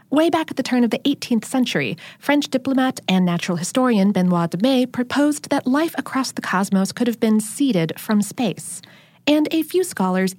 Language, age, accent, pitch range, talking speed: English, 30-49, American, 185-265 Hz, 190 wpm